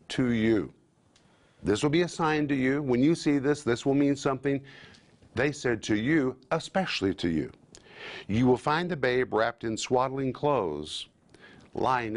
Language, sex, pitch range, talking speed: English, male, 90-130 Hz, 170 wpm